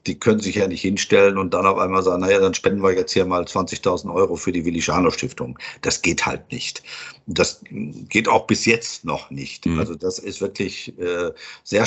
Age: 50-69